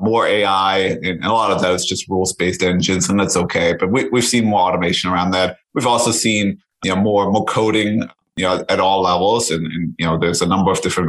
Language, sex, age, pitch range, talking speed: English, male, 30-49, 90-110 Hz, 240 wpm